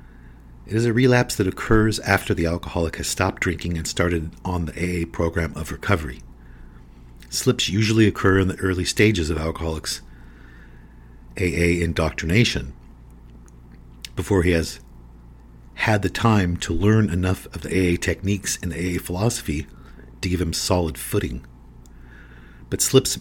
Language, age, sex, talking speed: English, 50-69, male, 140 wpm